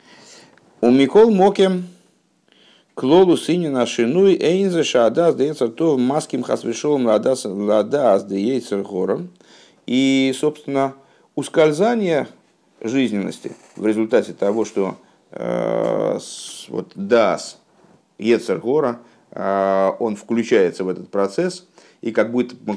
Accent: native